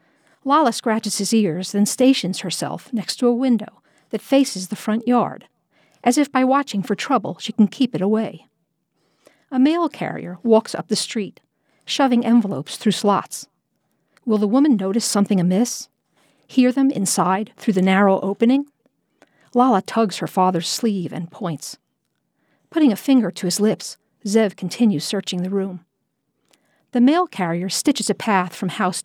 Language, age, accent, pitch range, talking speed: English, 50-69, American, 190-240 Hz, 160 wpm